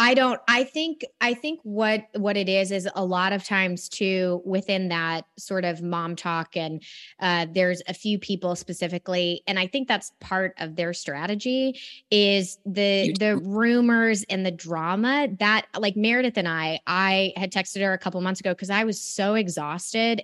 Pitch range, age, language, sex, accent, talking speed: 180-230 Hz, 20-39, English, female, American, 185 wpm